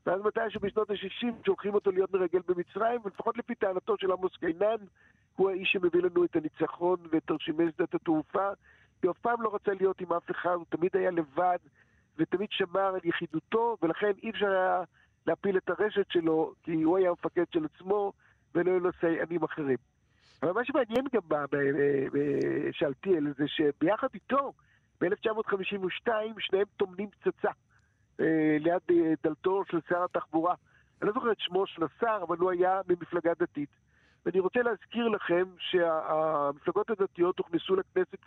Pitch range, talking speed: 170-215 Hz, 155 wpm